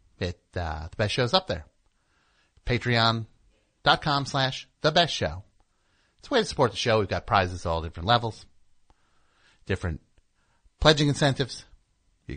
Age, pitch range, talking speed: 50-69, 95-145 Hz, 145 wpm